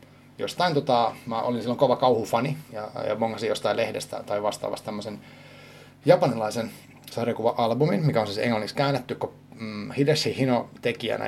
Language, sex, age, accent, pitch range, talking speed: Finnish, male, 30-49, native, 110-130 Hz, 140 wpm